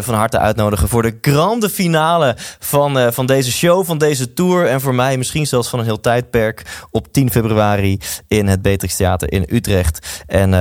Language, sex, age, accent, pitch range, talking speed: Dutch, male, 20-39, Dutch, 105-140 Hz, 185 wpm